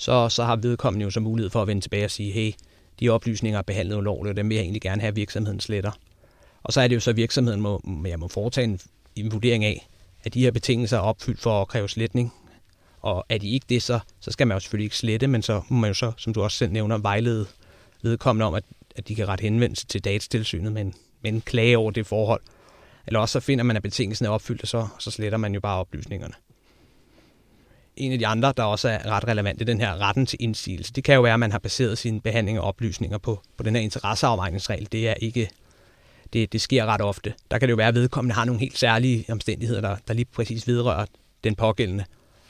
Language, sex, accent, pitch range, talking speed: Danish, male, native, 105-120 Hz, 240 wpm